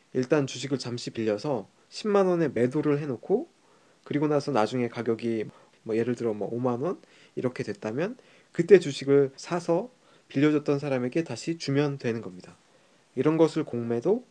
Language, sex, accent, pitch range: Korean, male, native, 120-165 Hz